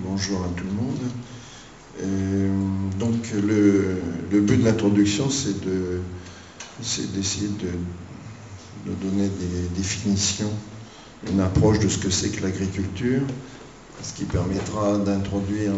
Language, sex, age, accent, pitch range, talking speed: French, male, 50-69, French, 95-110 Hz, 125 wpm